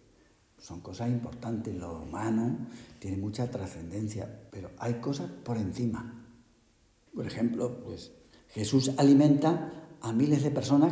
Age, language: 60-79, Spanish